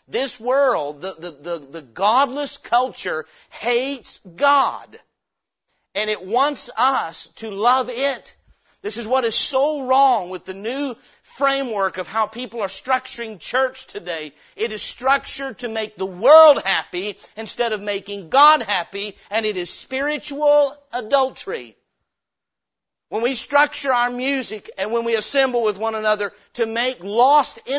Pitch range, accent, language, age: 225-280 Hz, American, English, 50-69